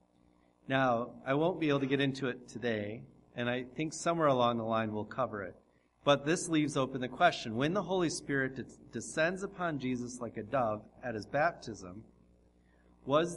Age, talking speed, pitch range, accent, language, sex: 40-59, 180 wpm, 90-135 Hz, American, English, male